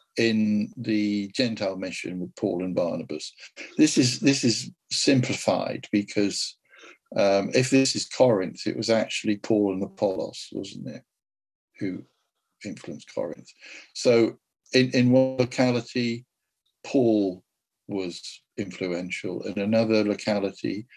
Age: 60-79